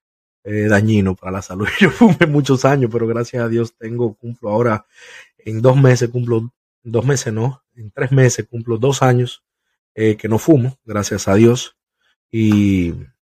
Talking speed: 165 wpm